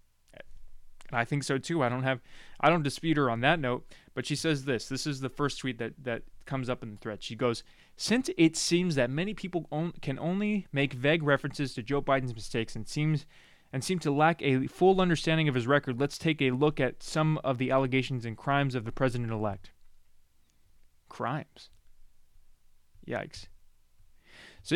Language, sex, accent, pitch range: English, male, American, 115-145 Hz